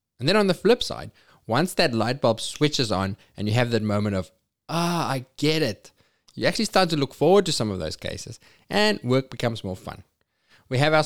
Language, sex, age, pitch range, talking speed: English, male, 20-39, 100-135 Hz, 220 wpm